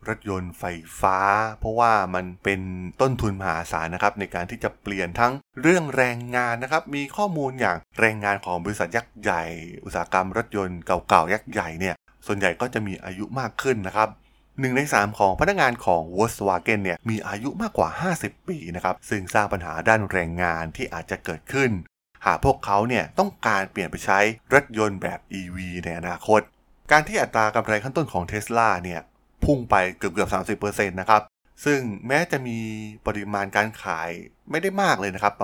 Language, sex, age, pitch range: Thai, male, 20-39, 90-115 Hz